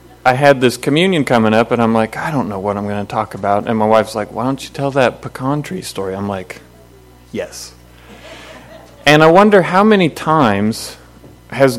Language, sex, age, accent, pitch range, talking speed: English, male, 40-59, American, 95-130 Hz, 205 wpm